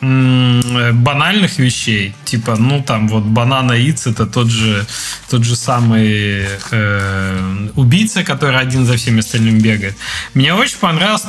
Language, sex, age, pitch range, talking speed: Russian, male, 20-39, 120-165 Hz, 130 wpm